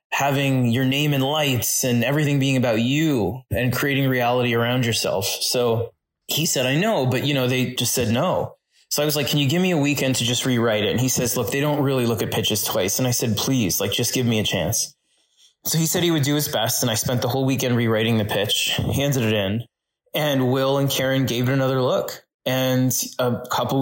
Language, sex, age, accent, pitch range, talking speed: English, male, 20-39, American, 115-135 Hz, 235 wpm